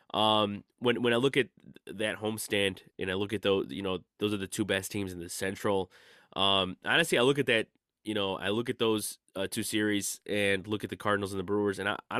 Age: 20-39